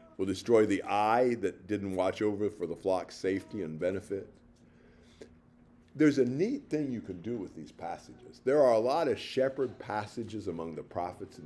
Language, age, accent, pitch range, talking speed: English, 50-69, American, 105-145 Hz, 185 wpm